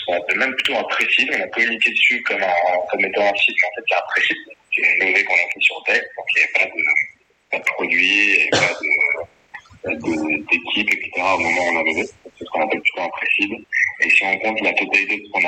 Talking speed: 250 wpm